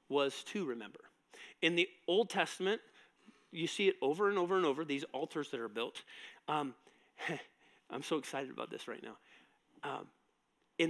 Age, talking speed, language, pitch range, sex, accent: 40-59, 170 wpm, English, 155-235 Hz, male, American